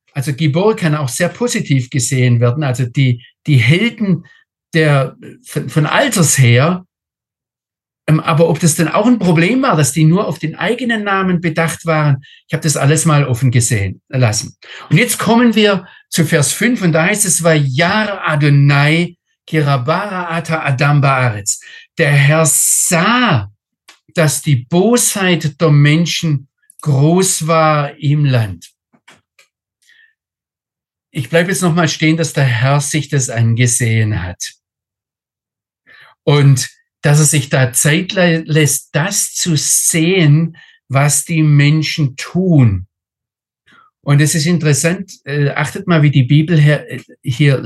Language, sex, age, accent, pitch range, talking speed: German, male, 50-69, German, 135-175 Hz, 140 wpm